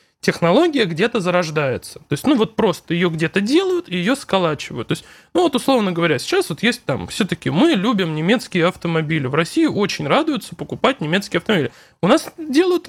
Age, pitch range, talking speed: 20-39, 170-255 Hz, 180 wpm